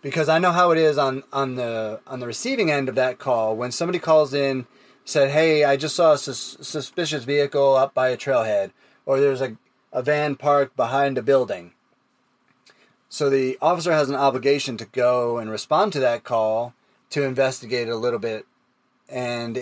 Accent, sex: American, male